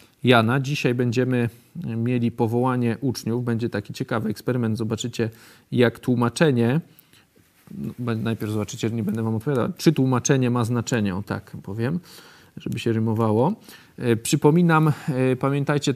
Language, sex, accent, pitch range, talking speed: Polish, male, native, 115-135 Hz, 120 wpm